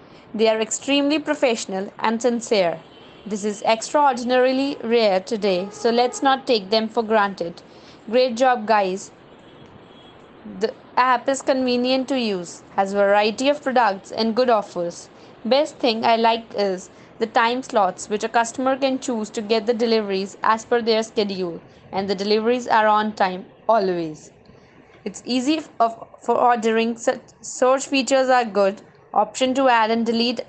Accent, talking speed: Indian, 150 wpm